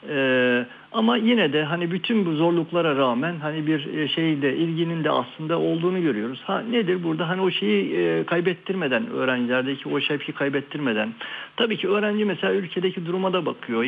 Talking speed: 160 wpm